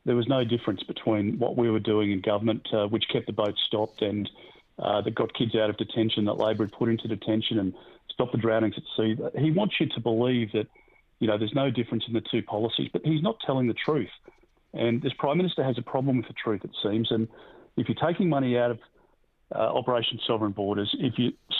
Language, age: English, 30-49